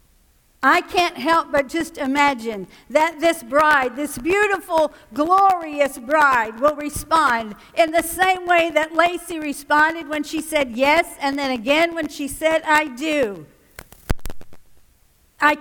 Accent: American